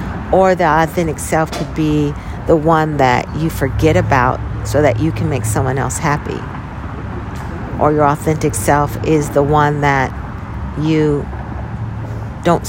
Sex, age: female, 50-69